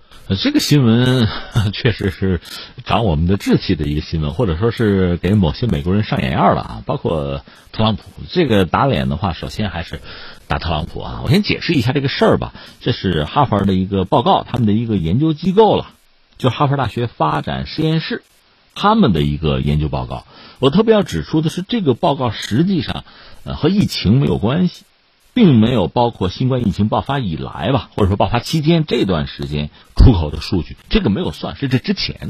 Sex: male